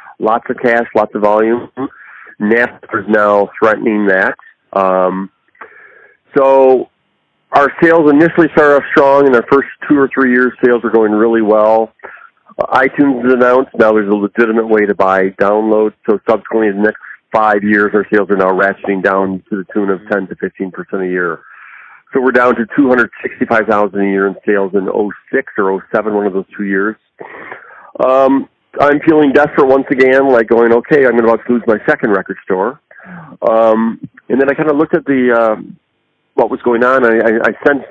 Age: 40-59